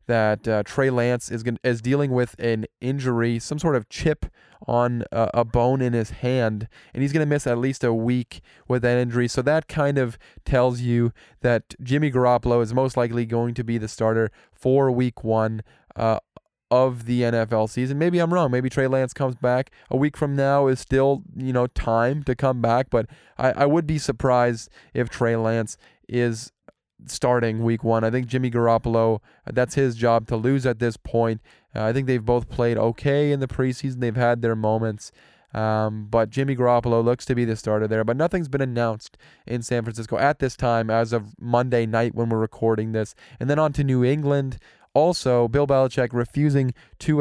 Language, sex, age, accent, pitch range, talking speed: English, male, 20-39, American, 115-135 Hz, 200 wpm